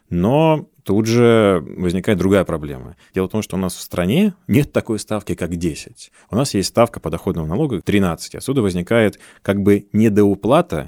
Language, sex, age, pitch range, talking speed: Russian, male, 20-39, 85-105 Hz, 175 wpm